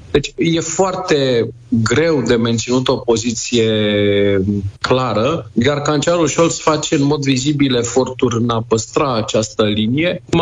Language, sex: Romanian, male